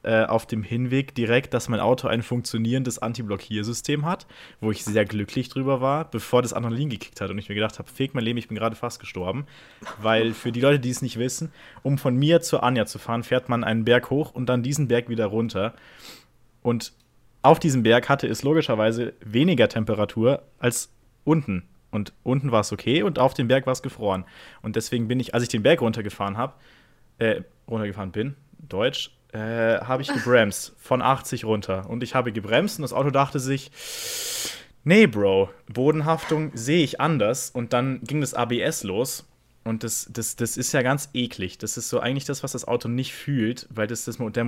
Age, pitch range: 20-39, 110-135 Hz